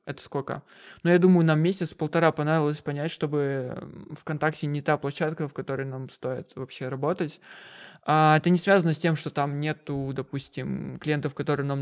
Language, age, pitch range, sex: Russian, 20-39, 140-170 Hz, male